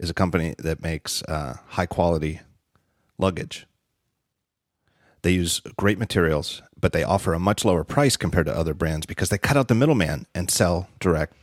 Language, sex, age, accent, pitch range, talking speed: English, male, 40-59, American, 80-105 Hz, 170 wpm